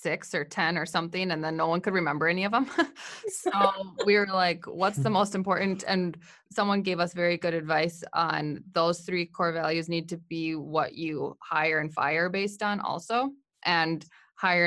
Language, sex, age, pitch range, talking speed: English, female, 20-39, 160-195 Hz, 190 wpm